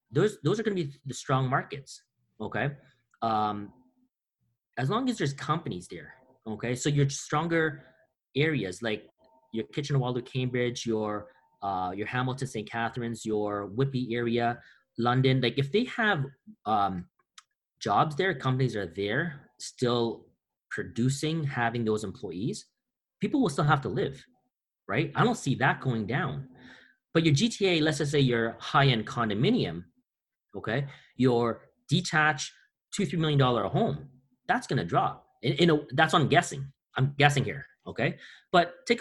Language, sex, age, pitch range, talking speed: English, male, 30-49, 120-165 Hz, 150 wpm